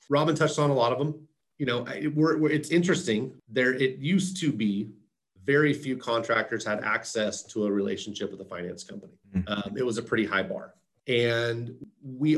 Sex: male